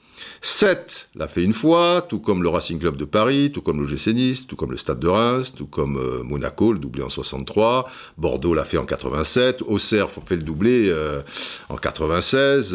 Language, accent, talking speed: French, French, 200 wpm